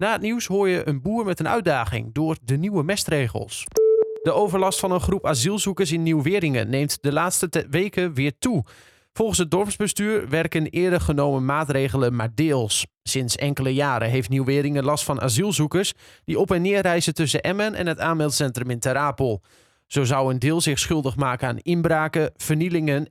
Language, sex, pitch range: Dutch, male, 135-180 Hz